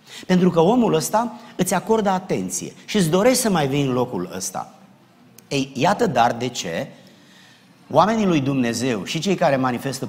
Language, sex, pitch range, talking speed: Romanian, male, 115-185 Hz, 165 wpm